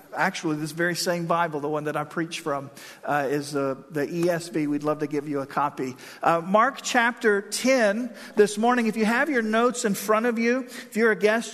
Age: 50-69